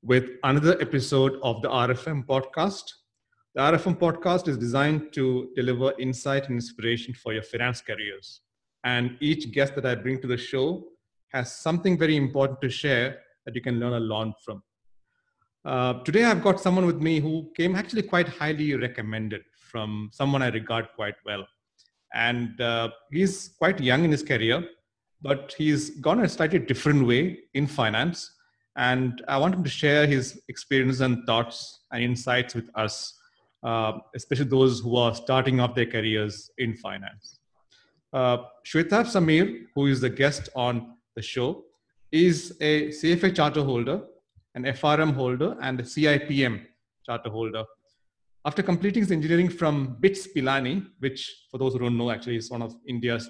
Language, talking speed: English, 160 wpm